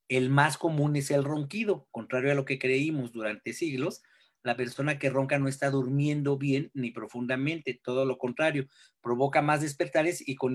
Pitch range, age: 130-165 Hz, 40-59